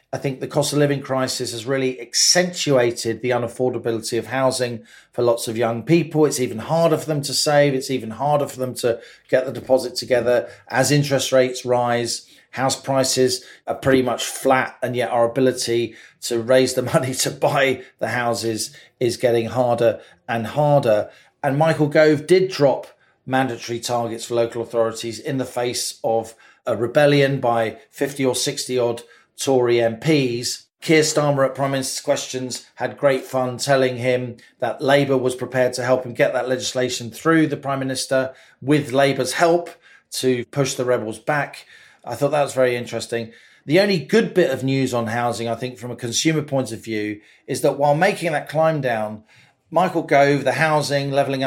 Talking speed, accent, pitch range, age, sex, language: 180 wpm, British, 120-140 Hz, 40-59, male, English